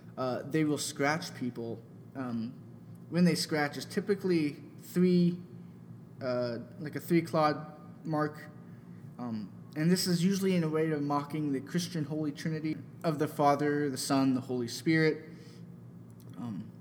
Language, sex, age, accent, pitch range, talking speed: English, male, 20-39, American, 135-160 Hz, 145 wpm